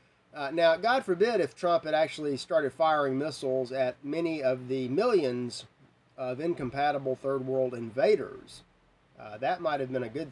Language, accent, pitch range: English, American, 120-170 Hz